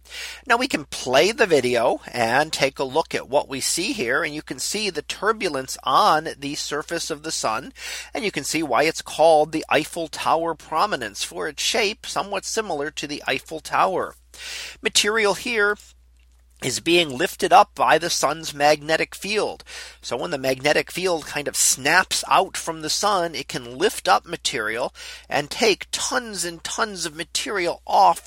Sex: male